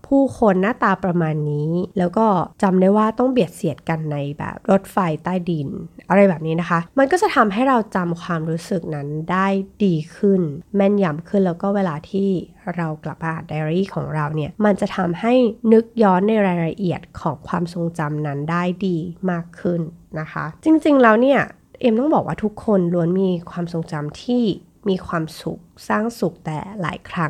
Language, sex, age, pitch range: Thai, female, 20-39, 165-215 Hz